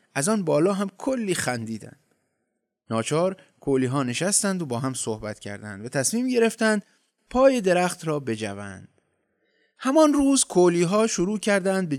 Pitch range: 130-205 Hz